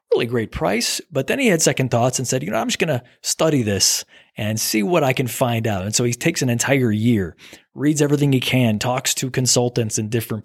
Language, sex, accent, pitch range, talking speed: English, male, American, 115-150 Hz, 240 wpm